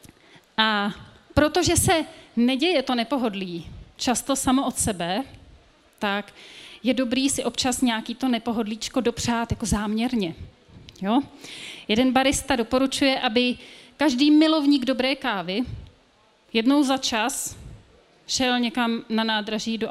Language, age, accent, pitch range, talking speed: Czech, 30-49, native, 215-255 Hz, 115 wpm